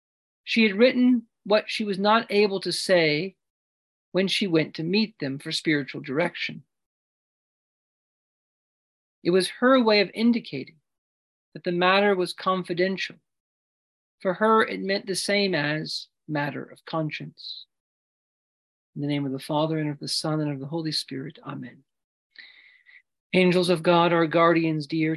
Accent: American